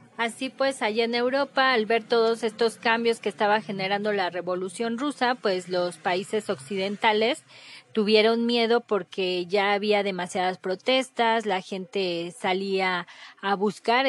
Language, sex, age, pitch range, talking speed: Spanish, female, 20-39, 195-235 Hz, 135 wpm